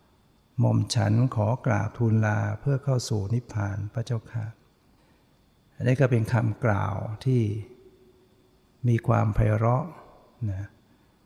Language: Thai